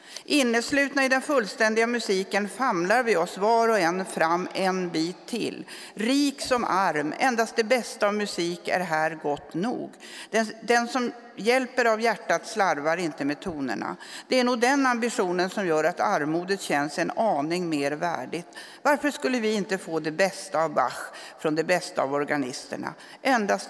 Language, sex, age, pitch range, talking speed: Swedish, female, 60-79, 170-240 Hz, 165 wpm